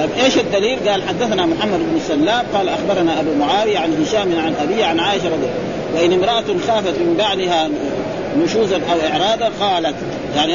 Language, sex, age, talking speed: Arabic, male, 40-59, 170 wpm